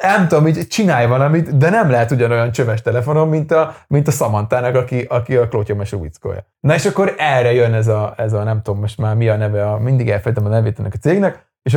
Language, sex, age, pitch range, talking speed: Hungarian, male, 30-49, 110-145 Hz, 230 wpm